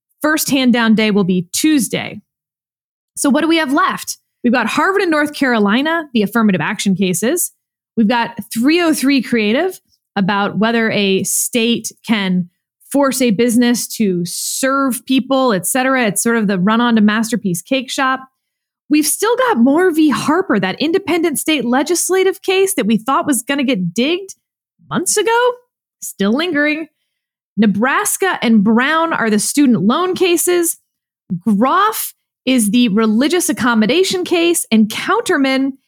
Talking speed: 145 wpm